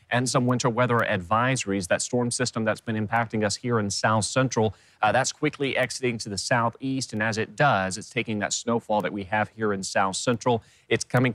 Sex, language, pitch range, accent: male, English, 105-130 Hz, American